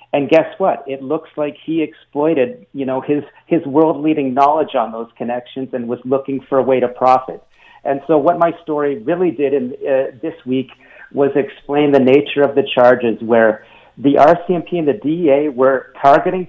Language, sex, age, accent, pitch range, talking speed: English, male, 50-69, American, 130-155 Hz, 185 wpm